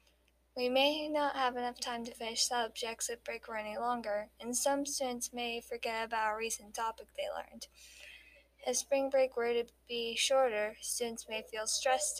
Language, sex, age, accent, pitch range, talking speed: English, female, 10-29, American, 220-270 Hz, 175 wpm